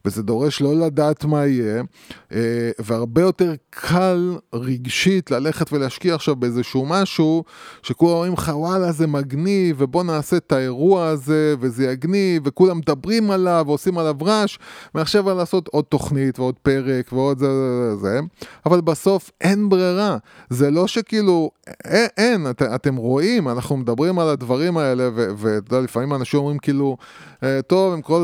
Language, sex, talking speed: Hebrew, male, 150 wpm